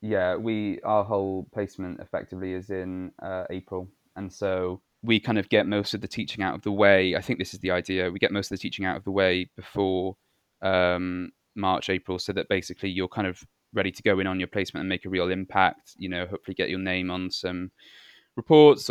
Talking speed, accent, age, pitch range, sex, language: 225 wpm, British, 20-39, 95-105 Hz, male, English